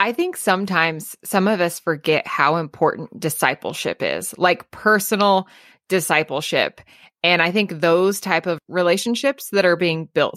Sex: female